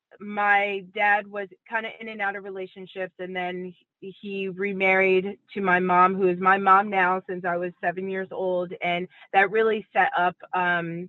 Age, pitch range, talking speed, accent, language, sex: 30-49, 180-210 Hz, 185 wpm, American, English, female